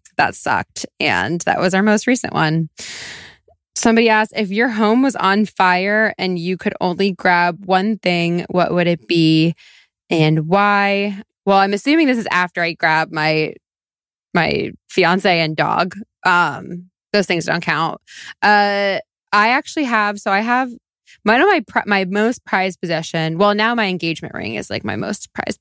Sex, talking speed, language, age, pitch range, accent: female, 170 wpm, English, 20-39, 165-205 Hz, American